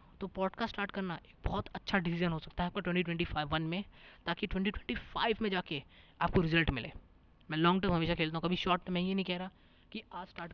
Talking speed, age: 210 wpm, 20-39